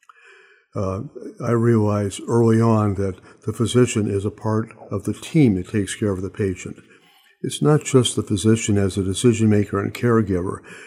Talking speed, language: 165 wpm, English